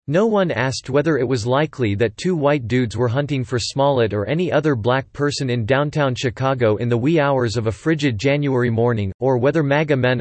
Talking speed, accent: 210 wpm, American